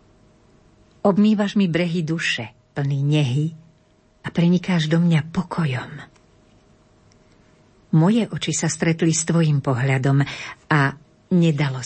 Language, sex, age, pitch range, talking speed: Slovak, female, 50-69, 135-170 Hz, 100 wpm